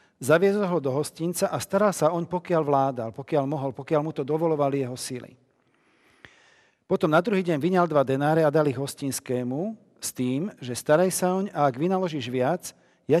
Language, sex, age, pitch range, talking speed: Slovak, male, 50-69, 130-165 Hz, 175 wpm